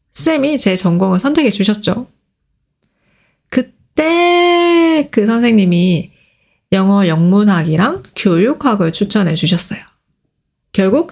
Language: Korean